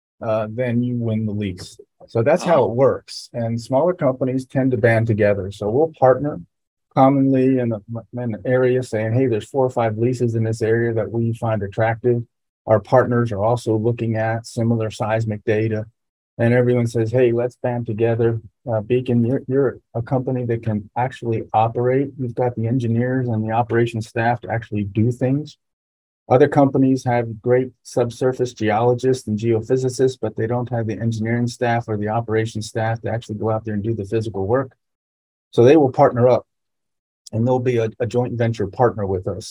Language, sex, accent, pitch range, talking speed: English, male, American, 110-125 Hz, 185 wpm